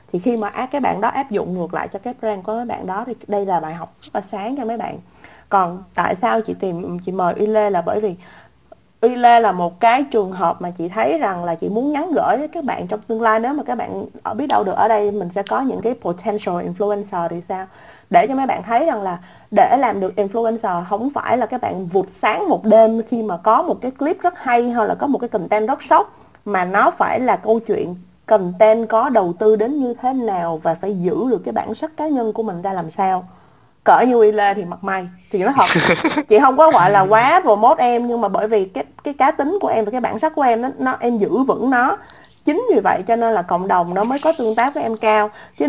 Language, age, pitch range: Vietnamese, 20-39, 200-250 Hz